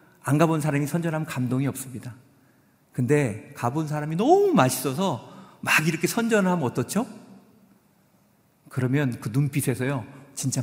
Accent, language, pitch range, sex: native, Korean, 125-190 Hz, male